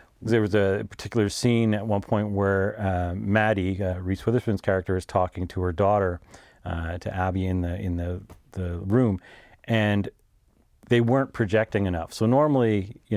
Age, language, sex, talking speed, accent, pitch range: 40-59, English, male, 170 wpm, American, 95-115 Hz